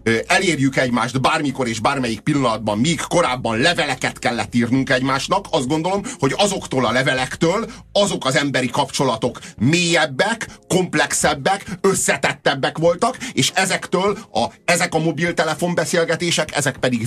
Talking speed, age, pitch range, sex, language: 125 wpm, 30-49, 130-180 Hz, male, Hungarian